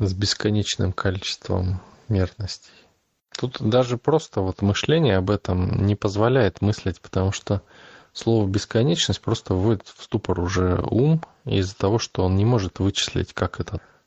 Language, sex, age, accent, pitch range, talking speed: Russian, male, 20-39, native, 95-110 Hz, 135 wpm